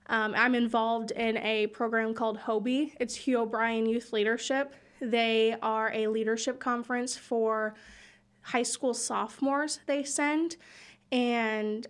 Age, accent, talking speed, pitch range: 20-39, American, 125 wpm, 225-250 Hz